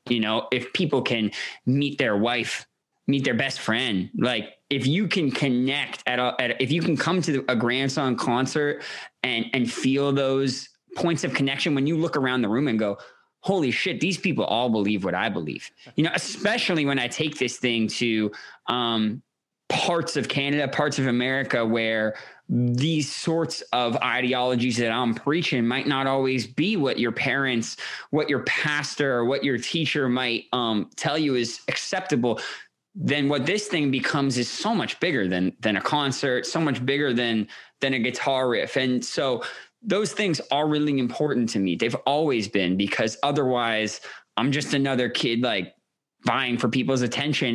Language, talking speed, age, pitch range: English, 175 wpm, 20-39, 120-150 Hz